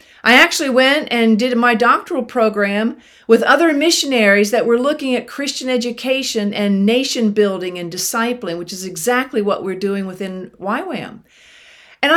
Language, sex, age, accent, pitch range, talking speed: English, female, 50-69, American, 210-270 Hz, 155 wpm